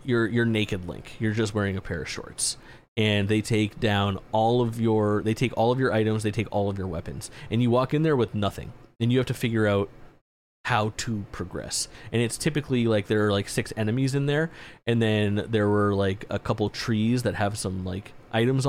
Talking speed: 225 wpm